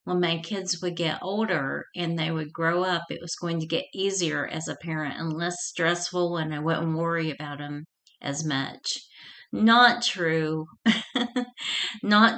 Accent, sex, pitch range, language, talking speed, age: American, female, 165-205 Hz, English, 165 wpm, 40-59